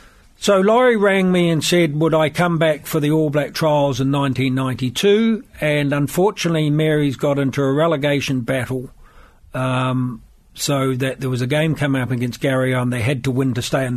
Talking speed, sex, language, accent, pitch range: 190 wpm, male, English, British, 125-155 Hz